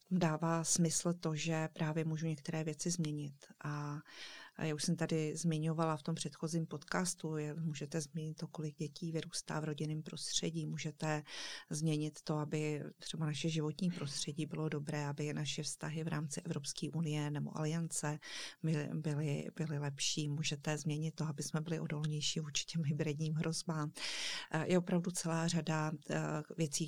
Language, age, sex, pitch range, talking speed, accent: Czech, 40-59, female, 150-165 Hz, 150 wpm, native